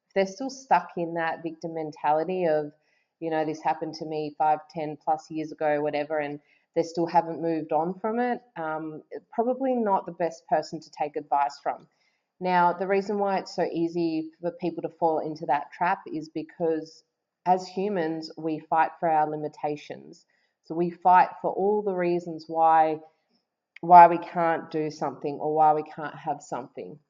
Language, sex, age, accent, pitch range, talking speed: English, female, 30-49, Australian, 155-170 Hz, 175 wpm